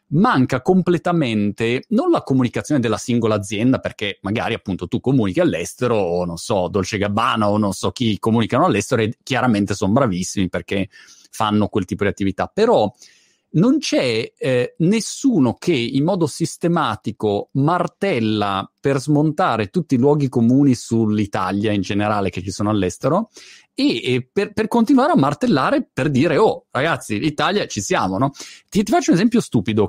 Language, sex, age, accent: Italian, male, 30-49, native